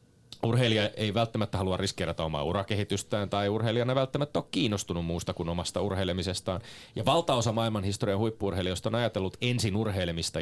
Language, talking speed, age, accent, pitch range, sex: Finnish, 145 wpm, 30-49, native, 85-115 Hz, male